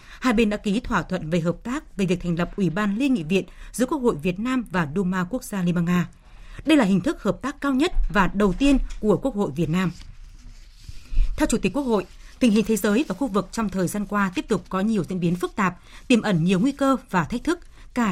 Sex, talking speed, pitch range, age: female, 260 wpm, 185-245 Hz, 20-39